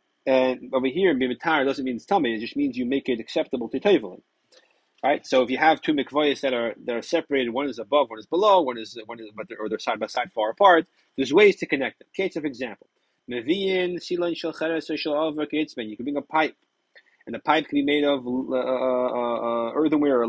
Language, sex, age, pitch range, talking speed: English, male, 30-49, 125-165 Hz, 210 wpm